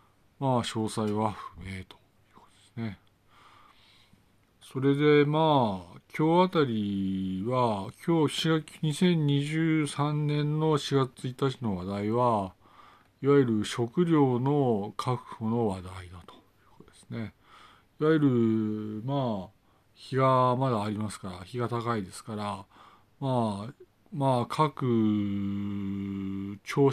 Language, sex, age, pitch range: Japanese, male, 50-69, 100-140 Hz